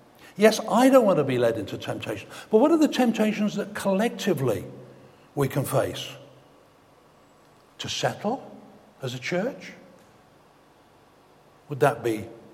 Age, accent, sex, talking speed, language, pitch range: 60-79, British, male, 130 wpm, English, 140-200 Hz